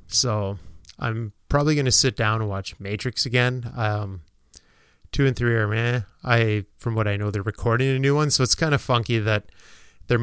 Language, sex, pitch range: English, male, 100-125 Hz